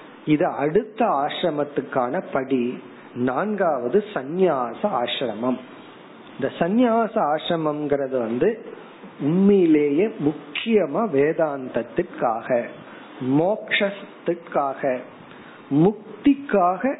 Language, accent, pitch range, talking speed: Tamil, native, 135-195 Hz, 50 wpm